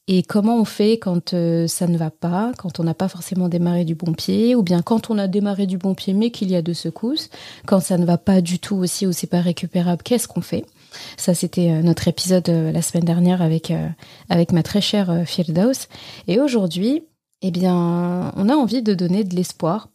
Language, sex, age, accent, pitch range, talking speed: French, female, 30-49, French, 175-205 Hz, 230 wpm